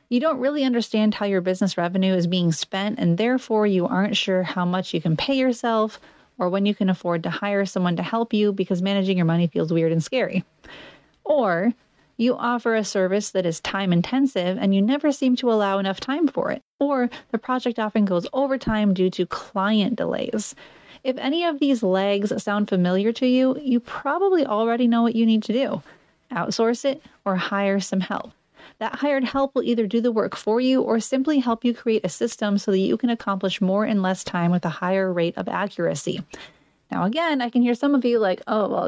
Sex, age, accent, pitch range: female, 30-49, American, 190-245 Hz